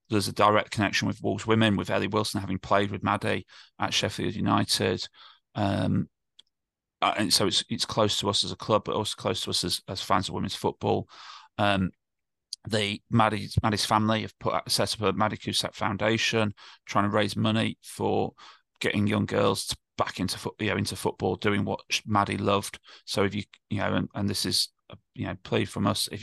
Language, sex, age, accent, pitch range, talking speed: English, male, 30-49, British, 100-110 Hz, 200 wpm